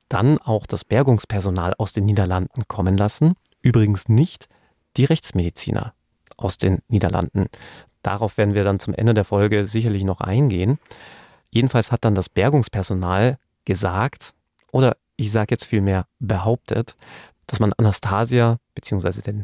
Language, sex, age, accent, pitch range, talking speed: German, male, 30-49, German, 105-120 Hz, 135 wpm